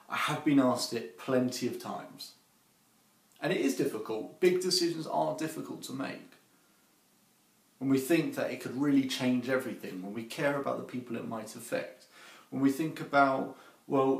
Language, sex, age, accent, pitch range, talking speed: English, male, 30-49, British, 115-145 Hz, 175 wpm